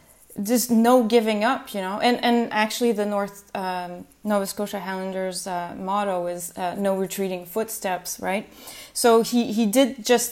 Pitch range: 195-220 Hz